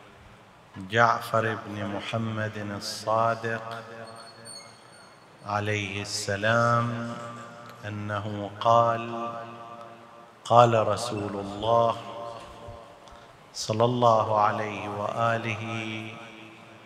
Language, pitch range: Arabic, 110-120 Hz